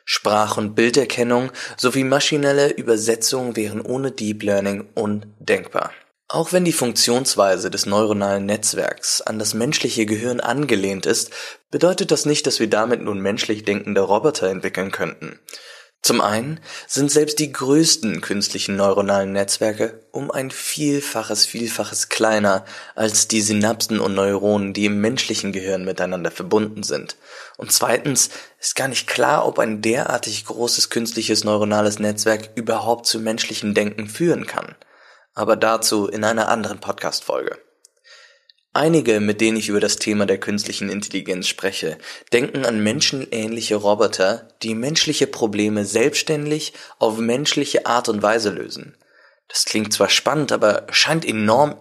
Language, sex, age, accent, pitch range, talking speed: English, male, 20-39, German, 105-135 Hz, 140 wpm